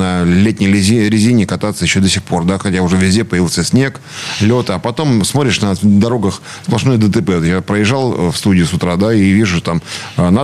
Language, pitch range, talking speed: Russian, 95-120 Hz, 185 wpm